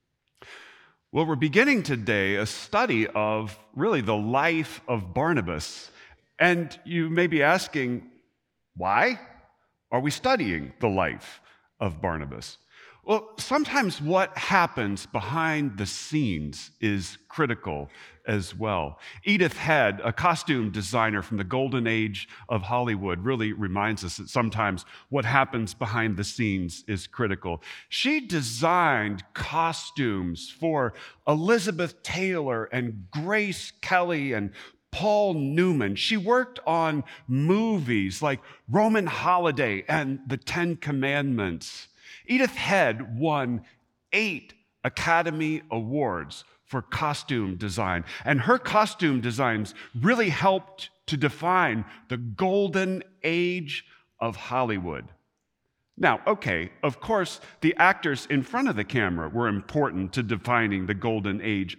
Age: 40-59